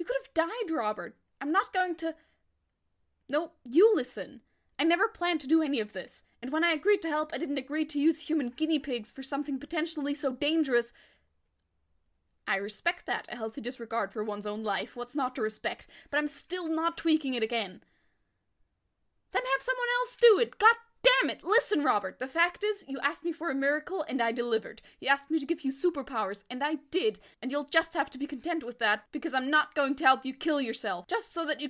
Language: English